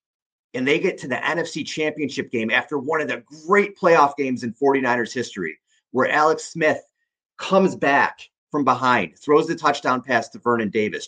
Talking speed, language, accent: 175 wpm, English, American